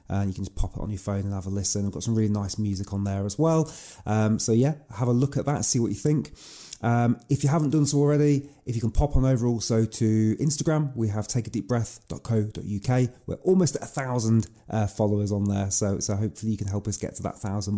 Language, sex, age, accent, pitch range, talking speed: English, male, 30-49, British, 105-125 Hz, 255 wpm